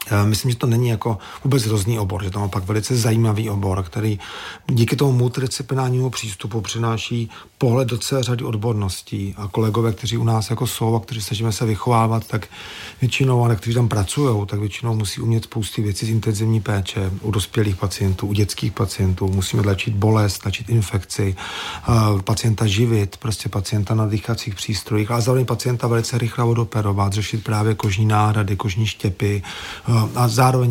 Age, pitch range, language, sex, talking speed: 40-59, 105-120 Hz, Czech, male, 170 wpm